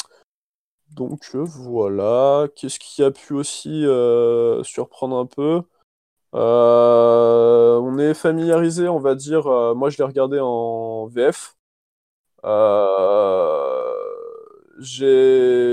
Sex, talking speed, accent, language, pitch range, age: male, 100 wpm, French, French, 120-165 Hz, 20-39